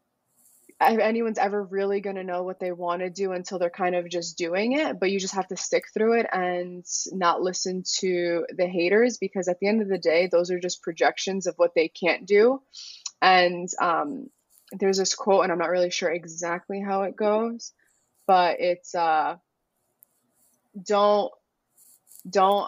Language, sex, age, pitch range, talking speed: English, female, 20-39, 180-225 Hz, 180 wpm